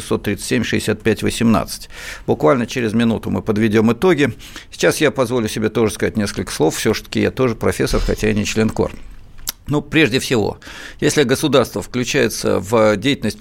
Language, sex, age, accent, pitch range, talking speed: Russian, male, 50-69, native, 105-120 Hz, 150 wpm